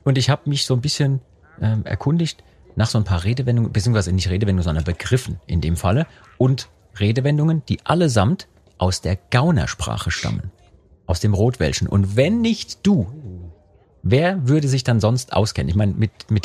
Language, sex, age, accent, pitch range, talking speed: German, male, 40-59, German, 100-135 Hz, 170 wpm